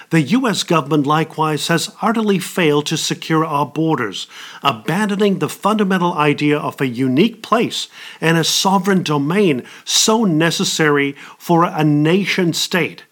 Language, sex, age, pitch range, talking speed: English, male, 50-69, 145-185 Hz, 130 wpm